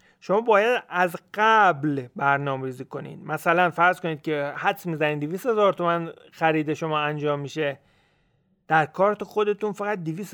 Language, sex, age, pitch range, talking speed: Persian, male, 30-49, 145-185 Hz, 145 wpm